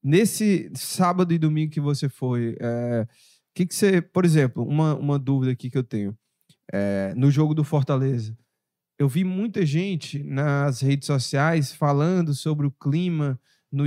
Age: 20-39